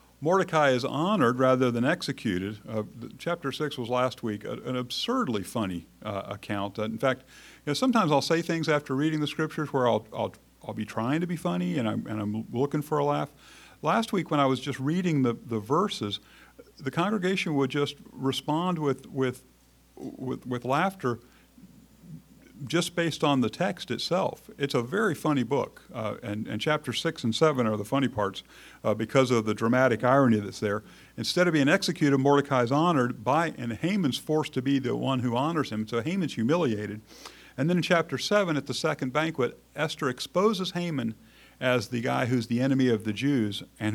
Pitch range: 115-155 Hz